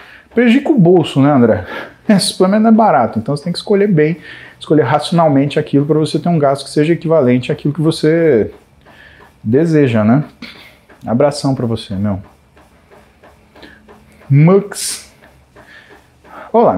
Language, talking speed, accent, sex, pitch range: Portuguese, 135 wpm, Brazilian, male, 130-175 Hz